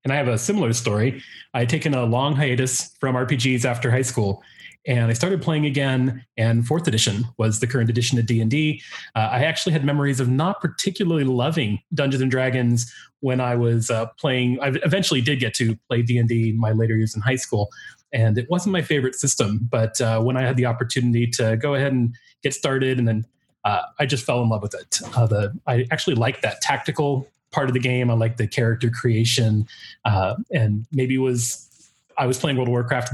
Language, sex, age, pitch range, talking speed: English, male, 30-49, 115-140 Hz, 215 wpm